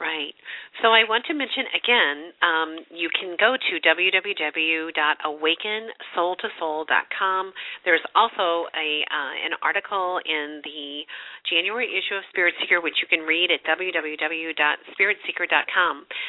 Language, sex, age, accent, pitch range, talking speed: English, female, 40-59, American, 150-200 Hz, 120 wpm